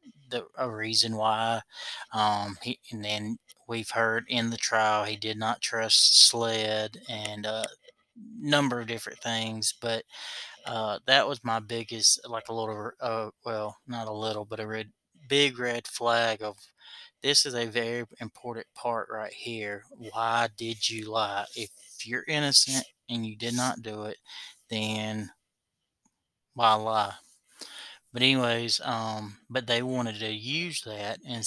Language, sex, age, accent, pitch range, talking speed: English, male, 20-39, American, 110-125 Hz, 145 wpm